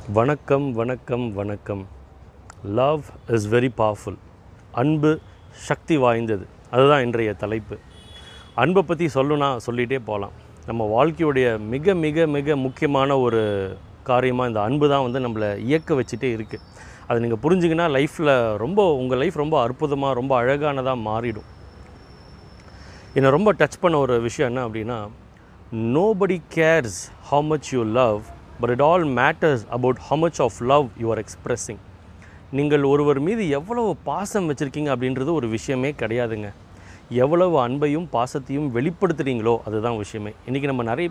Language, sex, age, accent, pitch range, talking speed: Tamil, male, 30-49, native, 105-140 Hz, 135 wpm